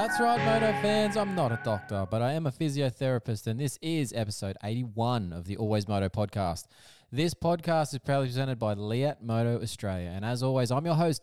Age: 20-39